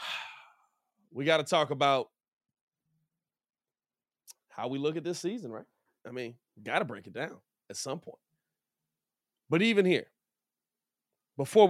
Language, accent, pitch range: English, American, 140-185 Hz